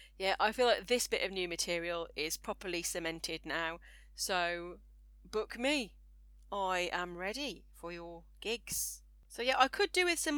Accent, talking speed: British, 170 wpm